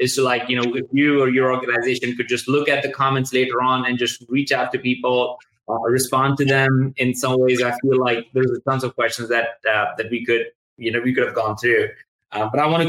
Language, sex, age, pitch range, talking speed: English, male, 20-39, 125-135 Hz, 260 wpm